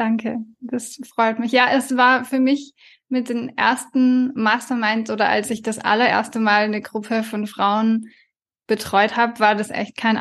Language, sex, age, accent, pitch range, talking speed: German, female, 10-29, German, 210-245 Hz, 170 wpm